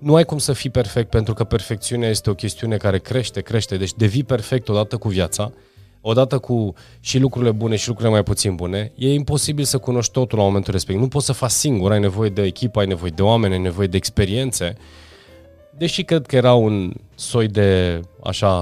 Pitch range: 95-125 Hz